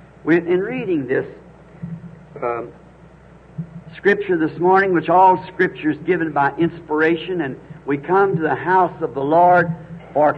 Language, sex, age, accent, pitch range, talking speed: English, male, 60-79, American, 150-180 Hz, 140 wpm